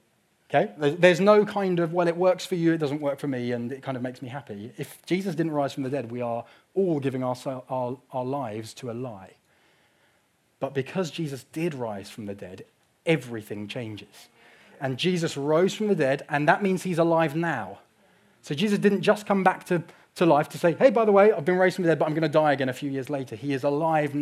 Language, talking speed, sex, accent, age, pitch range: English, 230 wpm, male, British, 30-49, 130-175 Hz